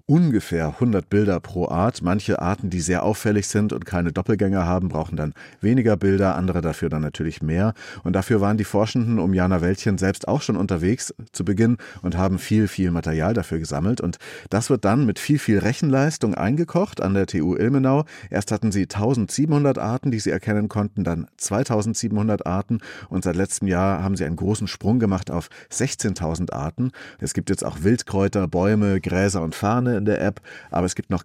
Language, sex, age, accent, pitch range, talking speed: German, male, 30-49, German, 90-110 Hz, 190 wpm